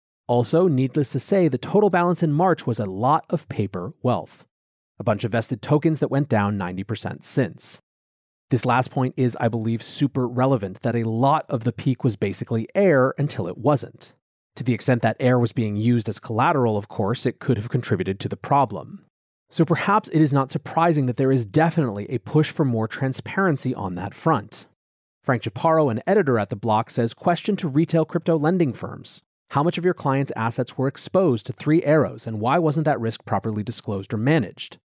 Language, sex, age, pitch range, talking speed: English, male, 30-49, 115-155 Hz, 200 wpm